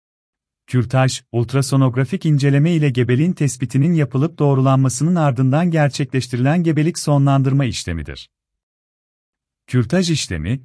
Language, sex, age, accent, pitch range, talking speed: Turkish, male, 40-59, native, 115-150 Hz, 85 wpm